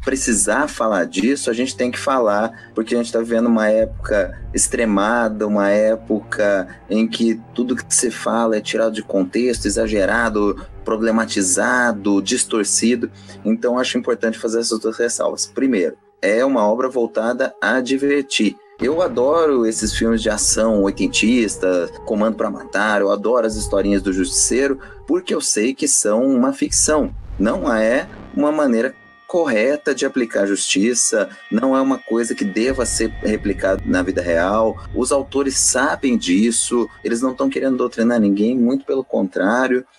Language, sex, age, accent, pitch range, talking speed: Portuguese, male, 30-49, Brazilian, 110-135 Hz, 150 wpm